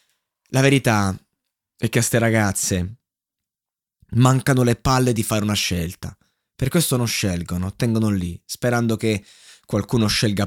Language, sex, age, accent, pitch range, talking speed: Italian, male, 20-39, native, 100-115 Hz, 140 wpm